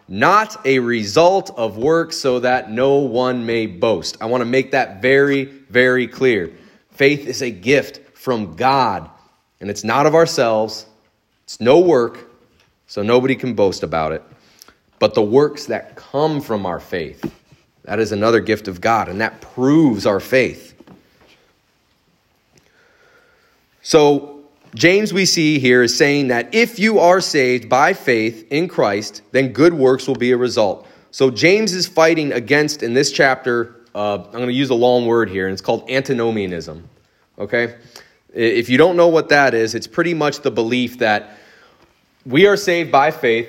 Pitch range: 115-150 Hz